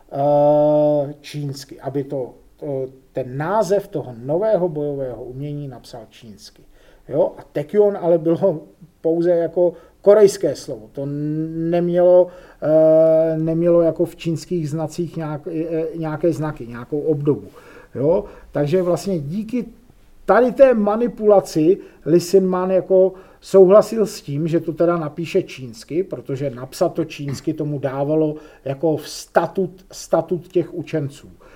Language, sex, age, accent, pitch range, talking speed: Czech, male, 40-59, native, 140-180 Hz, 120 wpm